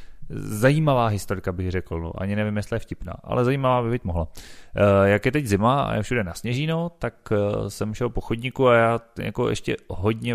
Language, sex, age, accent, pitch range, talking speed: Czech, male, 30-49, native, 95-115 Hz, 205 wpm